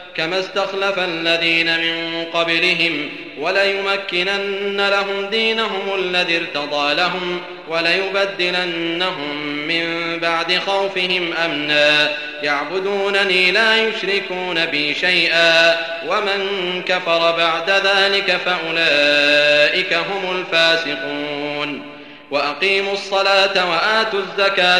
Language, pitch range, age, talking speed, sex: Arabic, 165-195 Hz, 30-49, 75 wpm, male